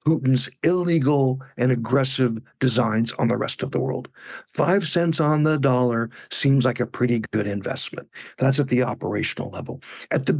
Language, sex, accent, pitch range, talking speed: English, male, American, 125-150 Hz, 165 wpm